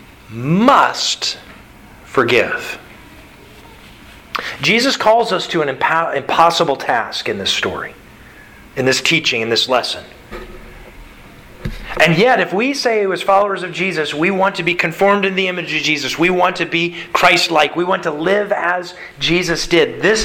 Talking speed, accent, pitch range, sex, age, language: 150 wpm, American, 155-200 Hz, male, 40-59, English